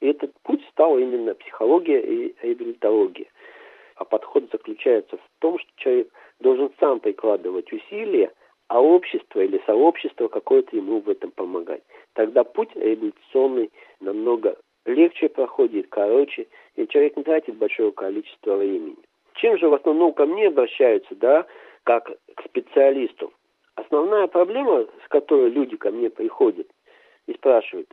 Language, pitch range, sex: Russian, 355-440 Hz, male